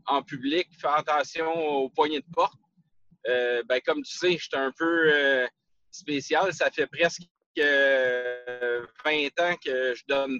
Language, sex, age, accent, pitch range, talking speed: French, male, 30-49, Canadian, 140-175 Hz, 160 wpm